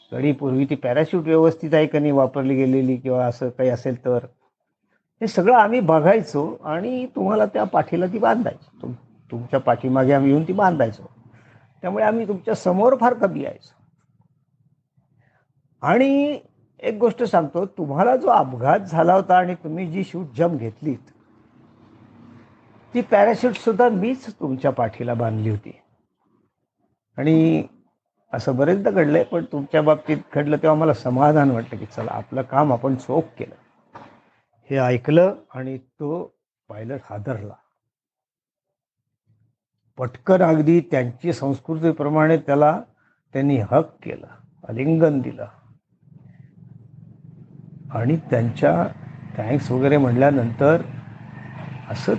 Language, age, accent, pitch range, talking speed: Marathi, 50-69, native, 125-160 Hz, 95 wpm